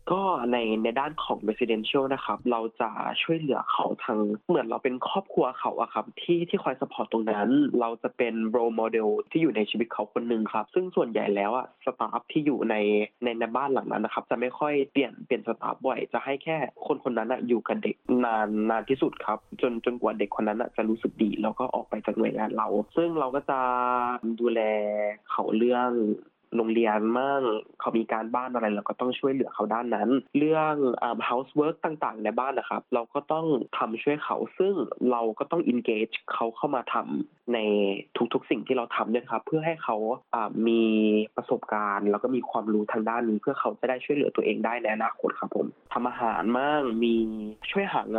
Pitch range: 110-135 Hz